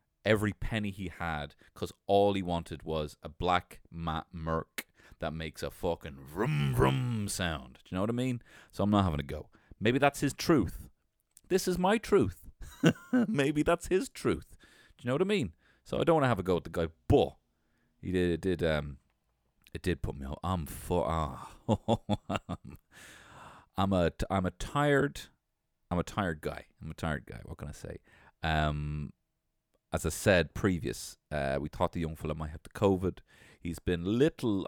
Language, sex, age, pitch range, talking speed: English, male, 30-49, 80-125 Hz, 195 wpm